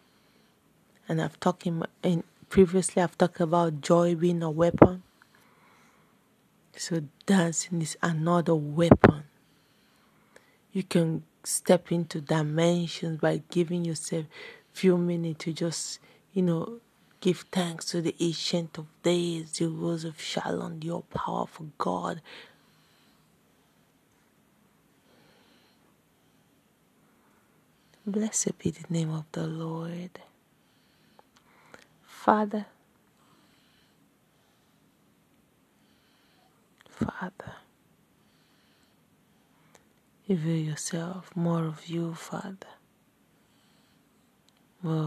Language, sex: English, female